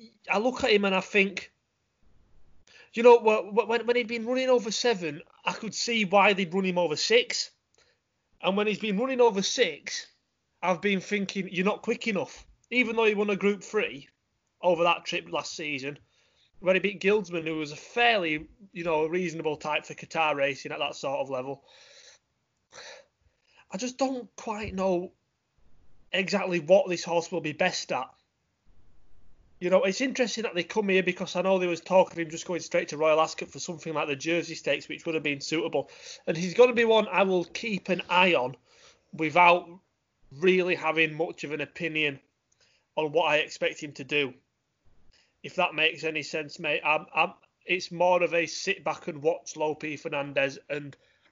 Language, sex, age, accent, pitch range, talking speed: English, male, 30-49, British, 155-205 Hz, 190 wpm